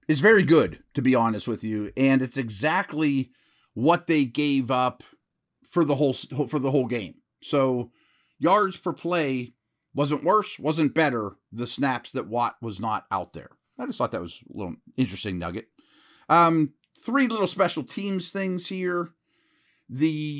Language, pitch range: English, 115-155 Hz